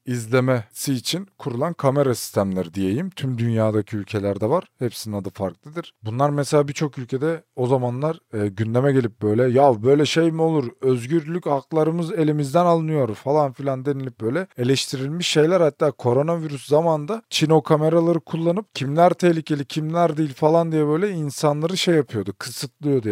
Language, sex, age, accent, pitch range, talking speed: Turkish, male, 40-59, native, 120-155 Hz, 145 wpm